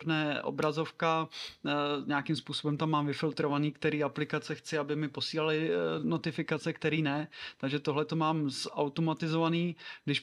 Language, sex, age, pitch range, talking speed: Czech, male, 30-49, 145-160 Hz, 135 wpm